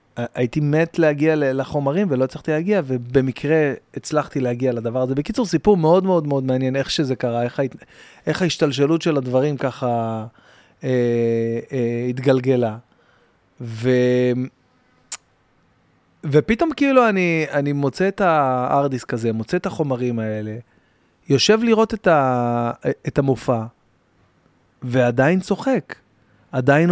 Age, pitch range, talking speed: 30-49, 120-165 Hz, 115 wpm